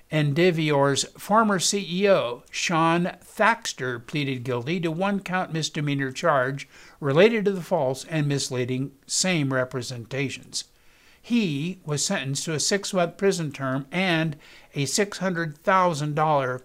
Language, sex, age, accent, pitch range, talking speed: English, male, 60-79, American, 135-185 Hz, 115 wpm